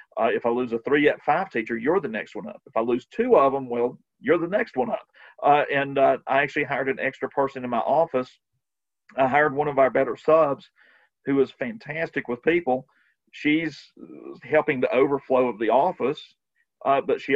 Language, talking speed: English, 205 wpm